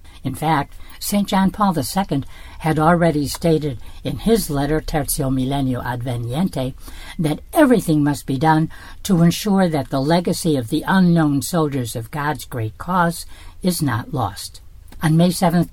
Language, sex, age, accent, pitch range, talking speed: English, female, 60-79, American, 130-180 Hz, 150 wpm